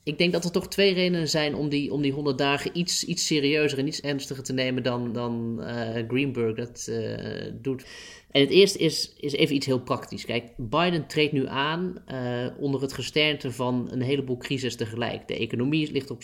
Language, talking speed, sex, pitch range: Dutch, 205 wpm, male, 120-145 Hz